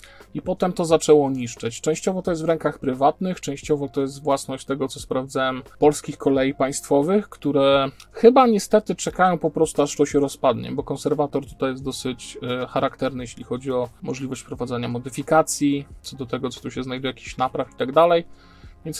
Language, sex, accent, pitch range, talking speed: Polish, male, native, 130-150 Hz, 175 wpm